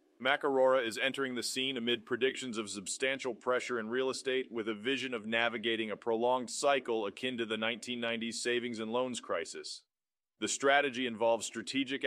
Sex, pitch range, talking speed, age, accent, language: male, 120-140 Hz, 165 wpm, 30-49, American, English